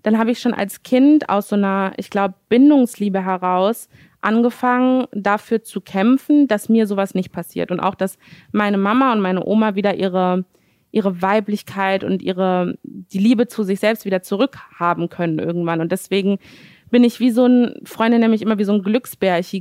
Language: German